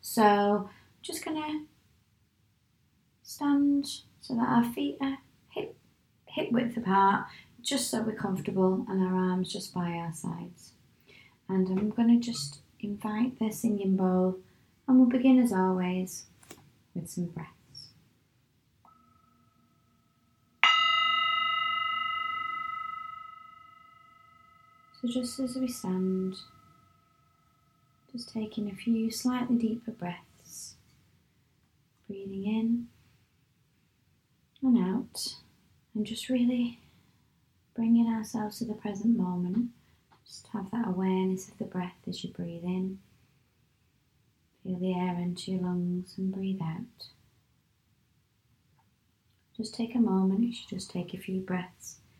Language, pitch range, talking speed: English, 185-245 Hz, 115 wpm